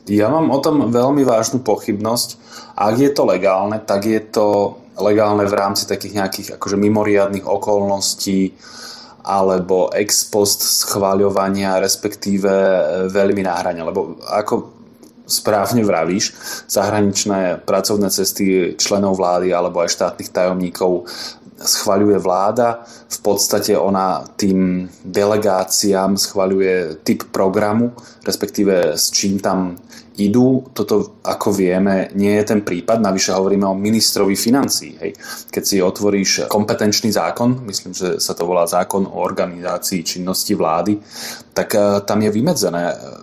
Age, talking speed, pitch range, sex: 20-39, 120 wpm, 95-105 Hz, male